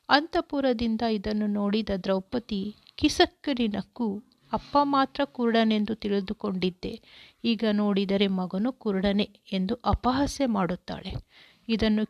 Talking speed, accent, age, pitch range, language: 85 wpm, native, 50-69, 210-260 Hz, Kannada